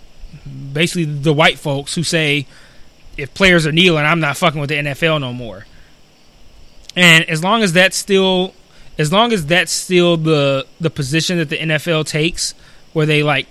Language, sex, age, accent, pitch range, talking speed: English, male, 20-39, American, 145-175 Hz, 175 wpm